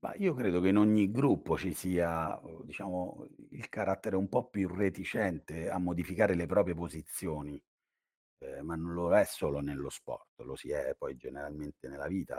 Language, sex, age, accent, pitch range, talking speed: Italian, male, 40-59, native, 80-110 Hz, 175 wpm